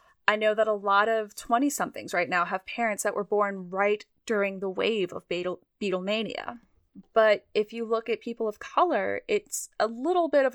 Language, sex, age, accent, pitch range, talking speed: English, female, 10-29, American, 200-245 Hz, 190 wpm